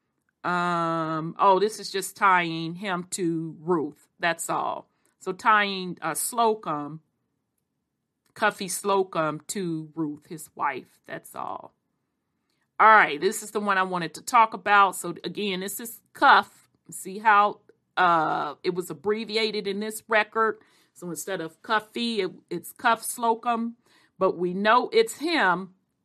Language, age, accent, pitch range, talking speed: English, 40-59, American, 175-220 Hz, 145 wpm